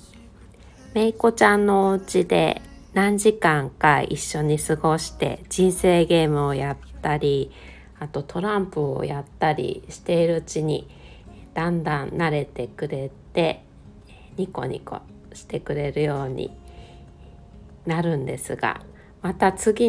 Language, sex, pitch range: Japanese, female, 130-170 Hz